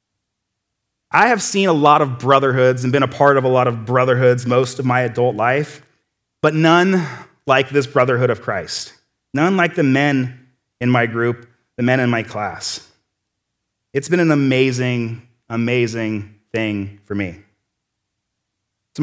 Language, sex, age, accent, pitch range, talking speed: English, male, 30-49, American, 120-180 Hz, 155 wpm